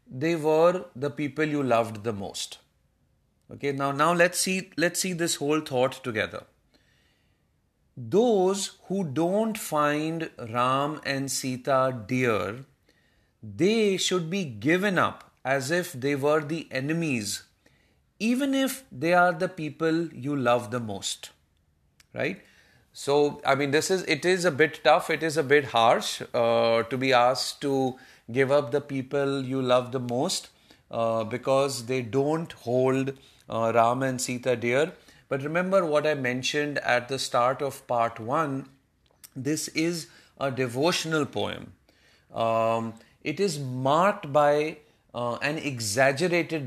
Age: 30-49